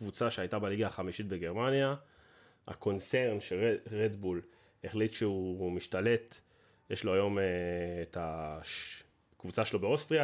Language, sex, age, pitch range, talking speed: Hebrew, male, 30-49, 95-135 Hz, 110 wpm